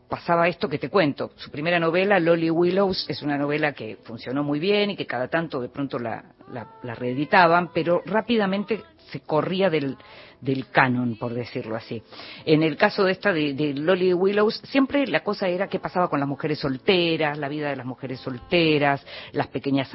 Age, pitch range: 40-59, 140-190 Hz